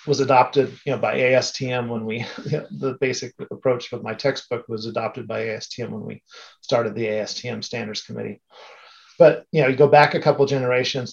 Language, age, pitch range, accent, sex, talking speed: English, 40-59, 125-160 Hz, American, male, 200 wpm